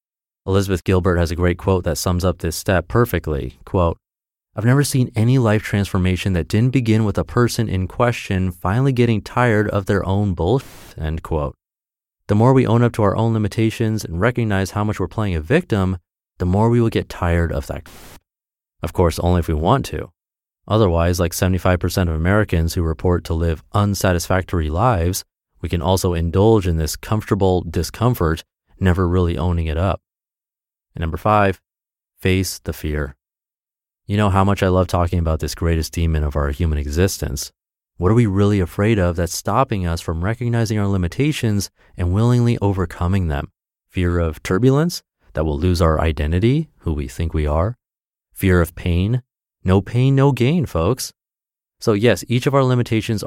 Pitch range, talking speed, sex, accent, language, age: 85-110 Hz, 175 wpm, male, American, English, 30-49